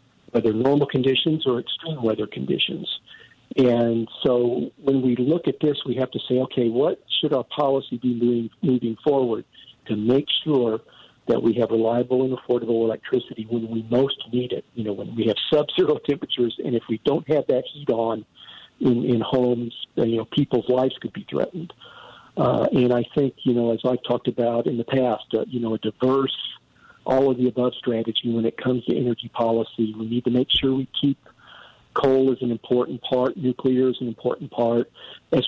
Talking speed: 195 wpm